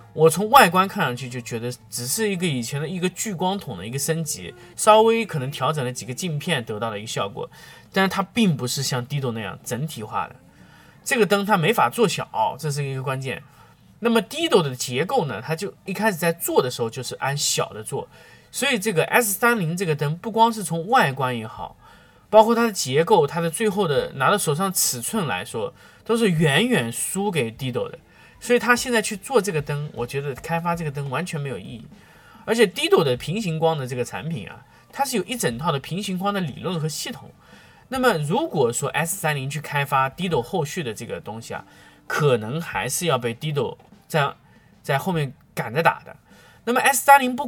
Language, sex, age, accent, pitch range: Chinese, male, 20-39, native, 135-210 Hz